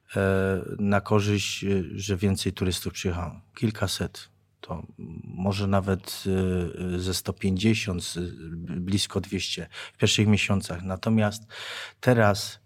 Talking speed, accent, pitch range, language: 90 wpm, native, 95-105 Hz, Polish